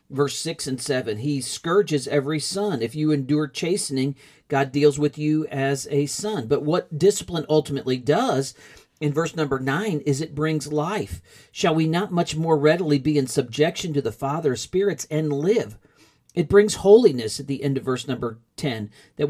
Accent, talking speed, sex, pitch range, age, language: American, 185 wpm, male, 135-175 Hz, 40-59, English